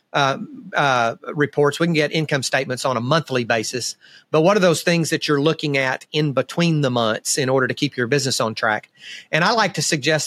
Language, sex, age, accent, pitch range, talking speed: English, male, 40-59, American, 135-165 Hz, 220 wpm